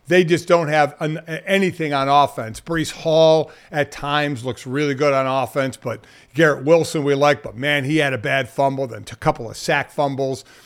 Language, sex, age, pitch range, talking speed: English, male, 50-69, 140-175 Hz, 205 wpm